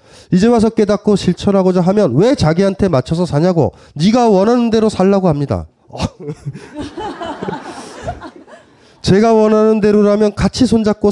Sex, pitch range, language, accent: male, 120-190 Hz, Korean, native